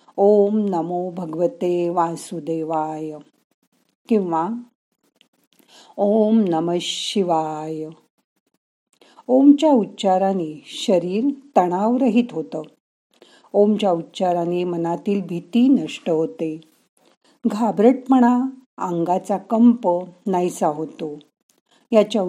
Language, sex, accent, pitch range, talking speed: Marathi, female, native, 170-225 Hz, 70 wpm